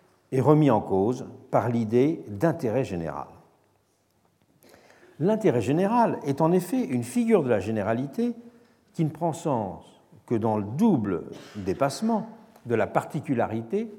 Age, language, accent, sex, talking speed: 60-79, French, French, male, 130 wpm